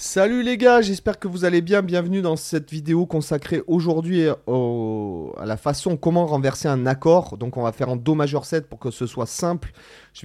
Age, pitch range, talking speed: 30-49, 120-160 Hz, 210 wpm